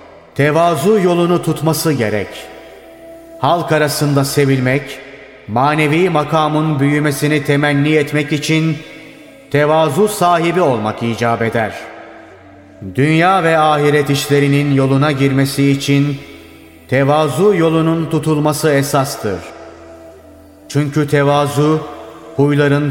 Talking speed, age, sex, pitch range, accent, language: 85 wpm, 30-49, male, 140-155 Hz, native, Turkish